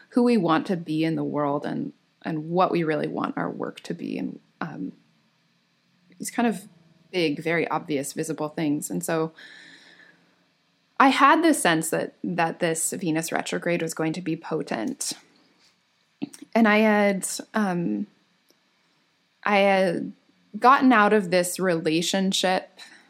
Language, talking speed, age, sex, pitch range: English, 145 wpm, 20-39, female, 160-220 Hz